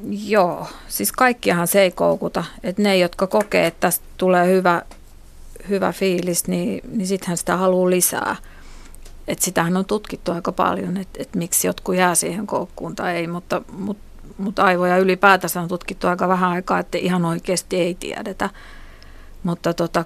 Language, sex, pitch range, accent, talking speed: Finnish, female, 175-195 Hz, native, 160 wpm